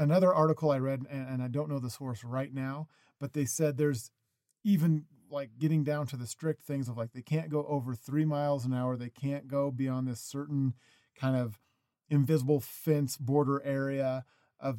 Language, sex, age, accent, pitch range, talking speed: English, male, 40-59, American, 125-150 Hz, 190 wpm